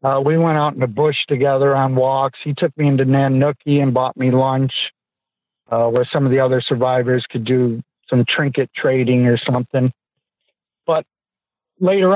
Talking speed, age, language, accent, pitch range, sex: 175 wpm, 60-79, English, American, 130-150 Hz, male